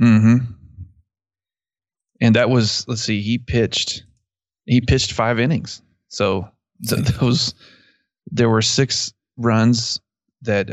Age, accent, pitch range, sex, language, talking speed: 20-39, American, 100-120 Hz, male, English, 110 wpm